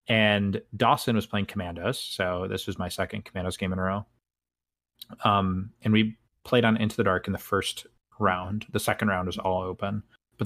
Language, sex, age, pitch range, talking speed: English, male, 20-39, 95-115 Hz, 195 wpm